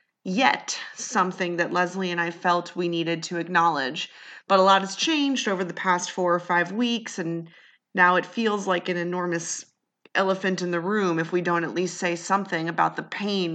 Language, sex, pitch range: English, female, 175-240 Hz